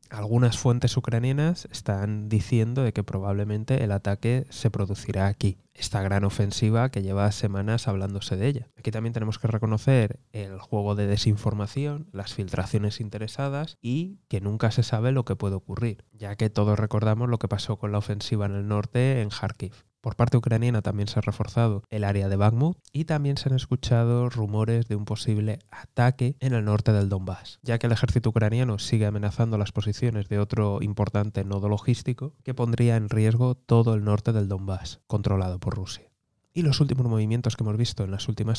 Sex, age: male, 20-39